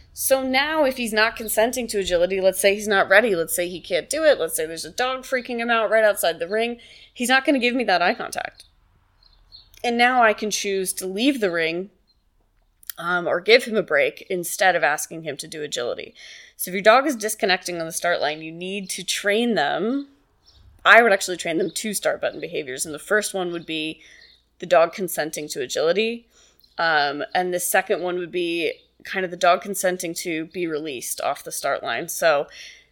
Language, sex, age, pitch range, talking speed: English, female, 20-39, 170-245 Hz, 215 wpm